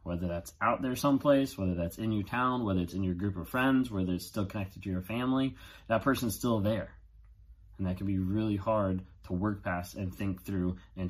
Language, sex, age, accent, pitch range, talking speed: English, male, 30-49, American, 90-105 Hz, 220 wpm